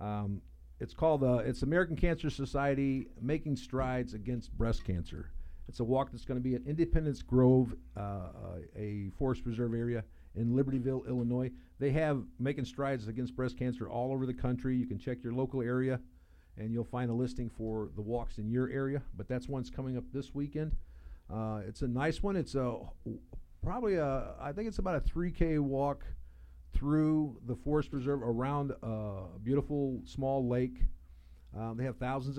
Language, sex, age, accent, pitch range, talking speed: English, male, 50-69, American, 105-140 Hz, 175 wpm